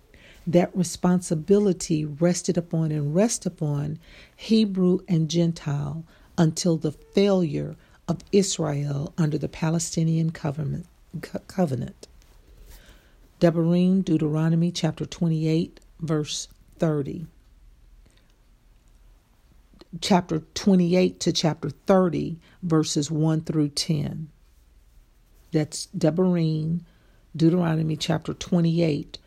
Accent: American